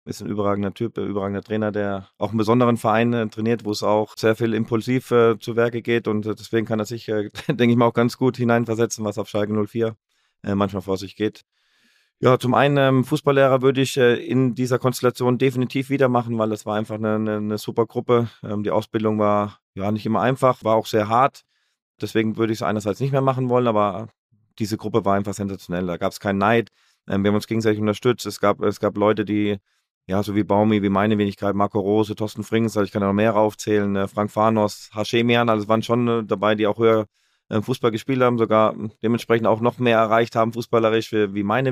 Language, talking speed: German, 210 wpm